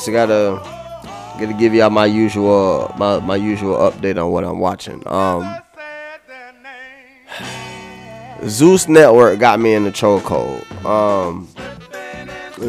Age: 20-39